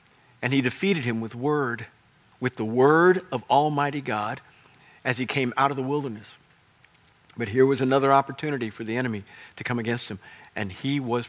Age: 50-69